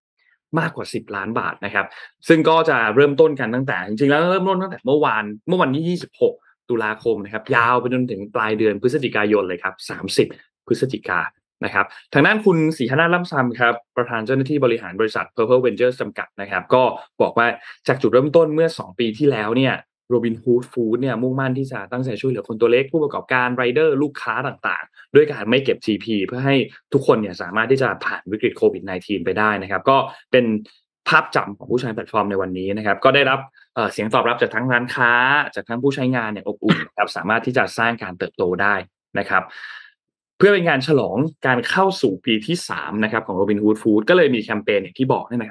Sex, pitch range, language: male, 105-140 Hz, Thai